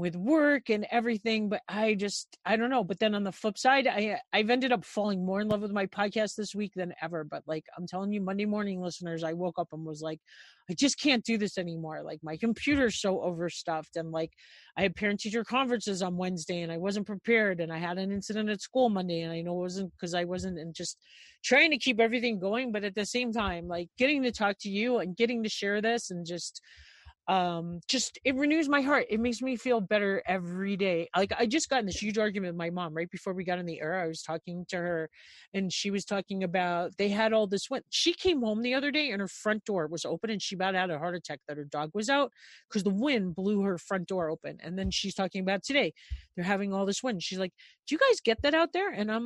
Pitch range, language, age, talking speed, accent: 180-230 Hz, English, 40-59, 255 wpm, American